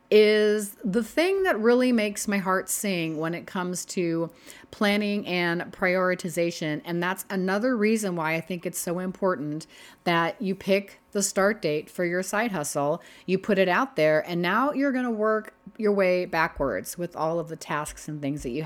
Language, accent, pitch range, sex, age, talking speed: English, American, 175-220 Hz, female, 30-49, 190 wpm